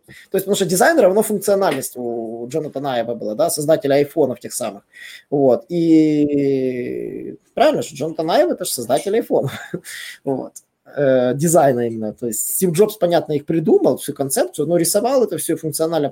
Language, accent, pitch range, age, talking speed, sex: Russian, native, 140-195 Hz, 20-39, 155 wpm, male